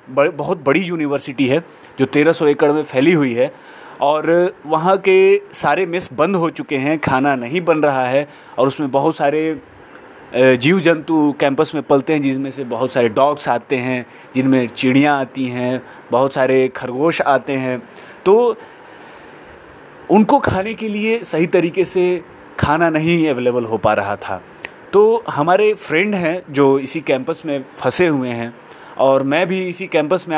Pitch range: 135-185 Hz